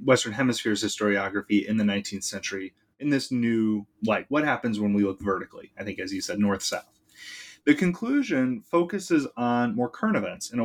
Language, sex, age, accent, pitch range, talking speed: English, male, 30-49, American, 105-130 Hz, 180 wpm